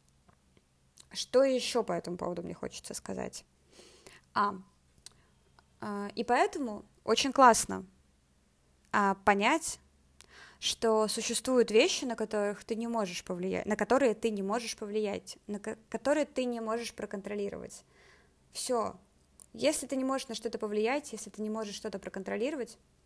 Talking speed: 125 wpm